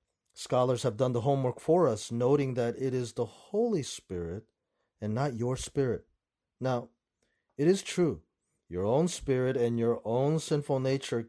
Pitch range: 115-150 Hz